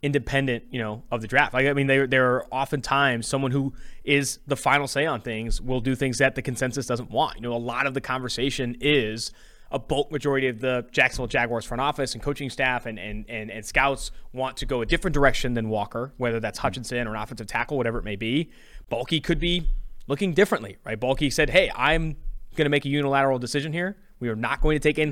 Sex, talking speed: male, 225 wpm